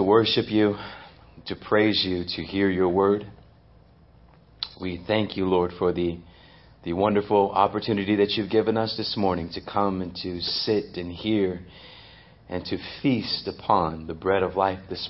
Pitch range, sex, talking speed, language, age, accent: 95-110 Hz, male, 160 wpm, English, 40-59, American